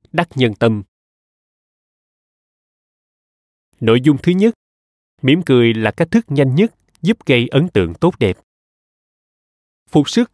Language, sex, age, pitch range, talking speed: Vietnamese, male, 20-39, 105-155 Hz, 130 wpm